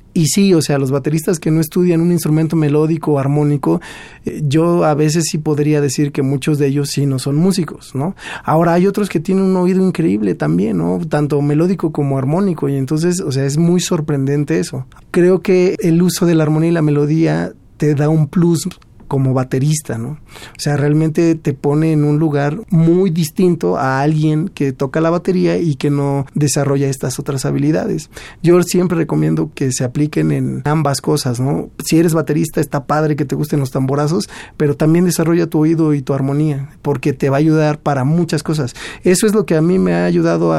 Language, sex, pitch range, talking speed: Spanish, male, 140-170 Hz, 200 wpm